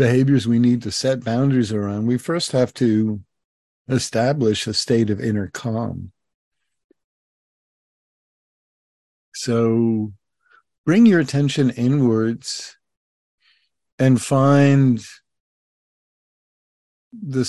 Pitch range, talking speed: 105-125 Hz, 85 wpm